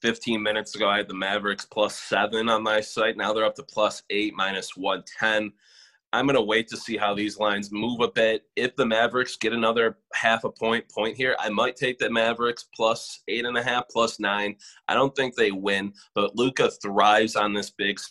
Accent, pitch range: American, 105-120 Hz